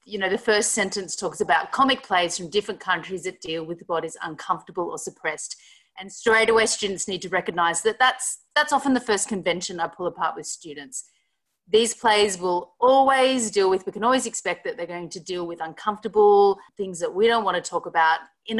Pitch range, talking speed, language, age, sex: 180-230 Hz, 205 wpm, English, 30-49, female